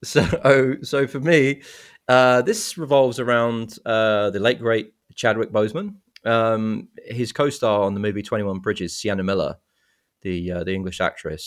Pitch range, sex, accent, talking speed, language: 90-110 Hz, male, British, 155 wpm, English